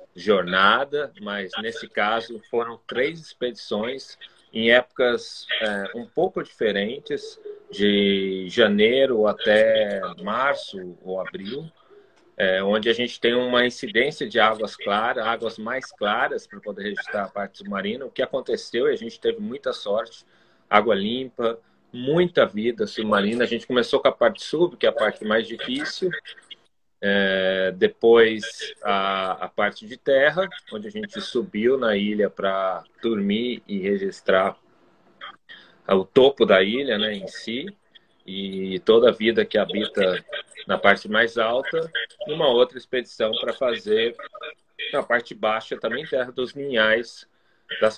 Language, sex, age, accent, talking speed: Portuguese, male, 30-49, Brazilian, 140 wpm